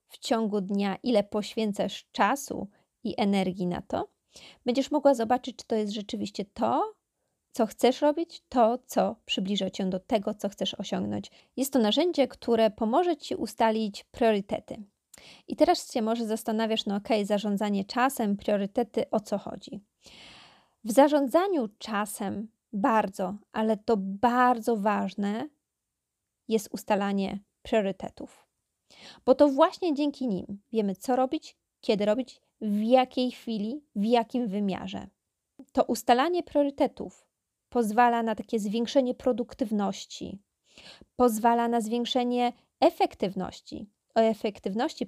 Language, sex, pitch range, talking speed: Polish, female, 205-255 Hz, 120 wpm